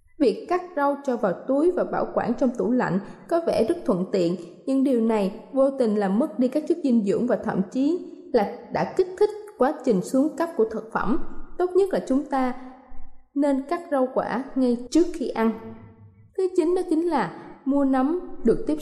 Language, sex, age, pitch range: Thai, female, 20-39, 225-295 Hz